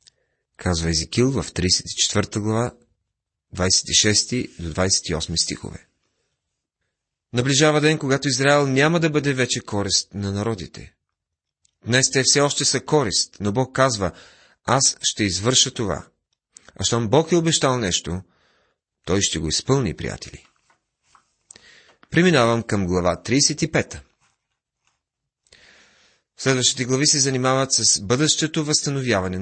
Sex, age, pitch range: male, 30-49, 95-135 Hz